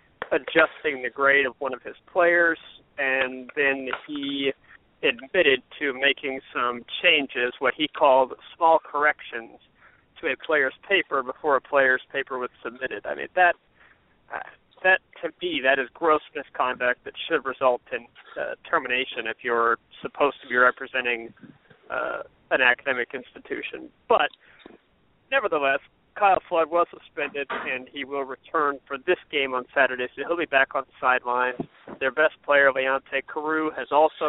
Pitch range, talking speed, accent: 130-145 Hz, 150 wpm, American